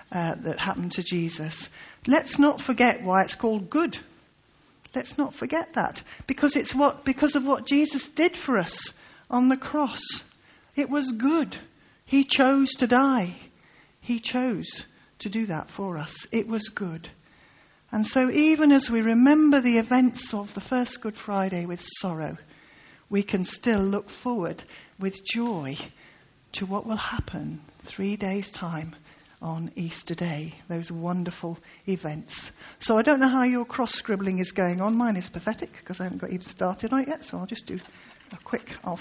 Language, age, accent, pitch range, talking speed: English, 50-69, British, 185-255 Hz, 165 wpm